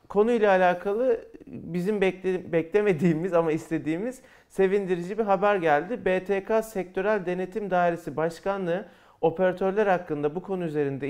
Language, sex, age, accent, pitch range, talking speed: Turkish, male, 40-59, native, 165-210 Hz, 115 wpm